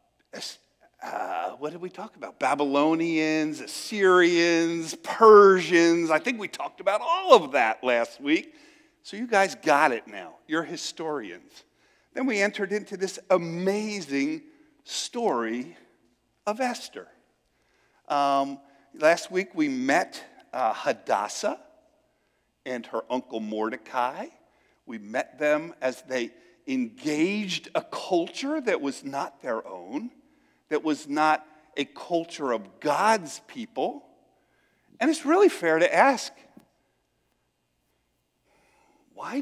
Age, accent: 50-69, American